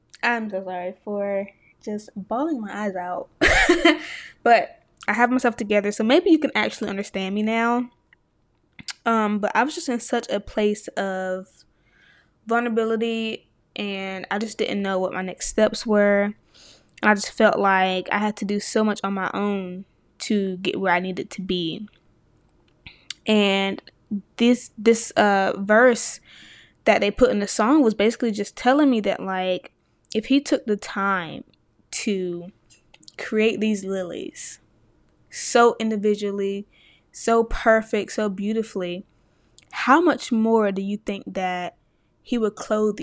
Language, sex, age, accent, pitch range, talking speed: English, female, 20-39, American, 195-230 Hz, 150 wpm